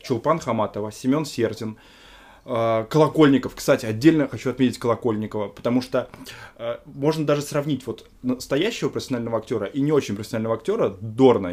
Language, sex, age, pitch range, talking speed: Russian, male, 20-39, 110-140 Hz, 130 wpm